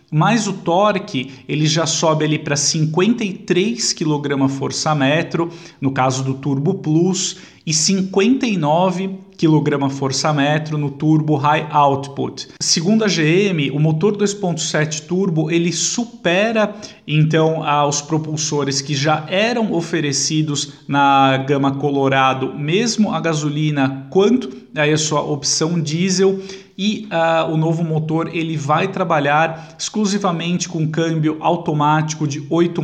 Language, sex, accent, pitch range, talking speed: Portuguese, male, Brazilian, 140-175 Hz, 120 wpm